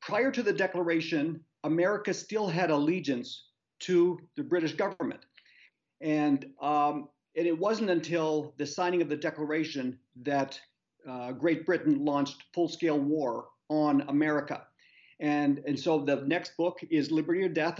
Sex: male